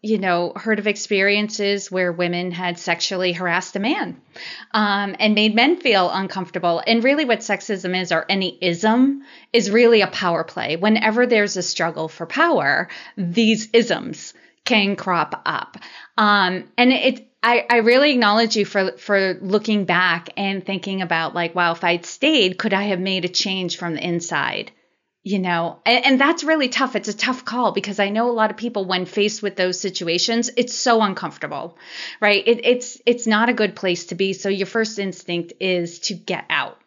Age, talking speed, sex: 30-49, 190 wpm, female